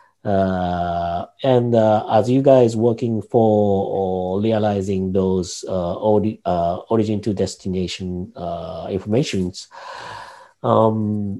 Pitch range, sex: 90-115 Hz, male